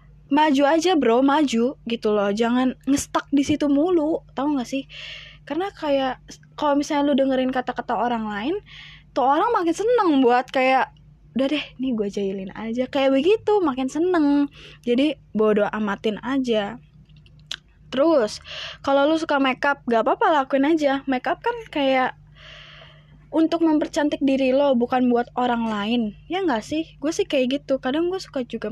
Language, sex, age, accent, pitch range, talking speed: Indonesian, female, 20-39, native, 230-290 Hz, 155 wpm